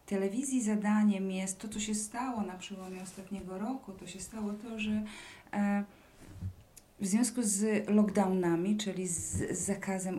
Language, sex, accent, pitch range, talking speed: Polish, female, native, 180-205 Hz, 135 wpm